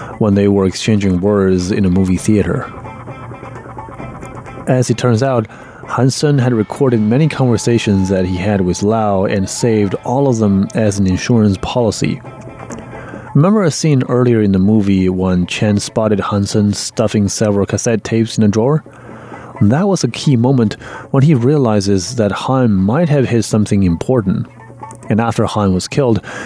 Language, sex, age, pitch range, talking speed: English, male, 30-49, 100-125 Hz, 160 wpm